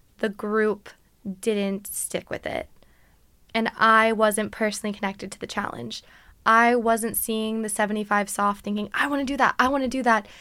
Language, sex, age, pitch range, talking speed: English, female, 10-29, 210-255 Hz, 180 wpm